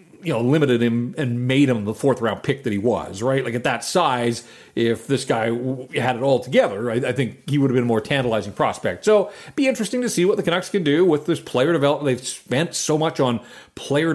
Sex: male